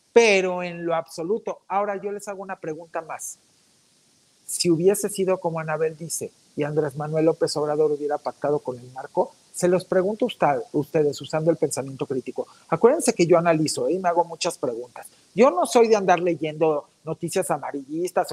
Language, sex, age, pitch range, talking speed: Spanish, male, 50-69, 155-220 Hz, 175 wpm